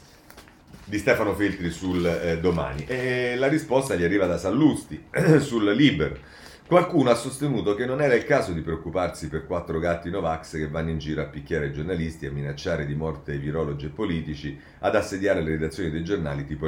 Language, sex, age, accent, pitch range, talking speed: Italian, male, 40-59, native, 80-115 Hz, 180 wpm